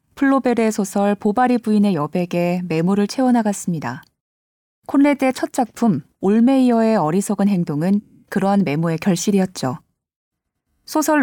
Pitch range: 180-240 Hz